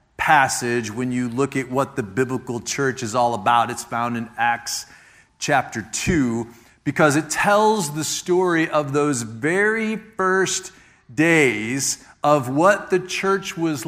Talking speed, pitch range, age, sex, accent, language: 145 wpm, 135-185 Hz, 40-59, male, American, English